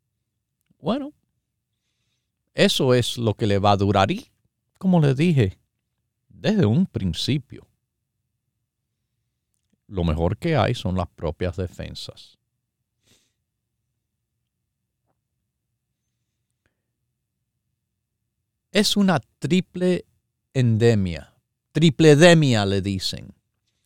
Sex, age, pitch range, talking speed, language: male, 50-69, 105-125 Hz, 80 wpm, Spanish